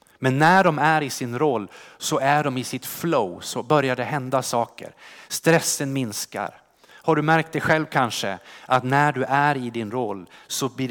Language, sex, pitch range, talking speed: Swedish, male, 120-155 Hz, 195 wpm